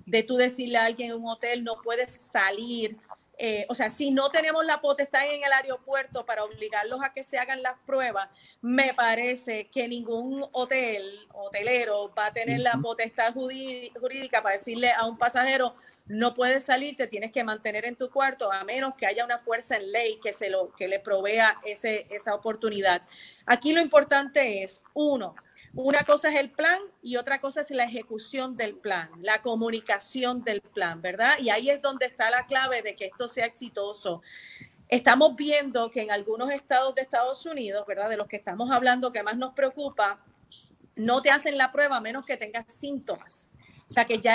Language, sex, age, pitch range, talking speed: Spanish, female, 30-49, 220-265 Hz, 195 wpm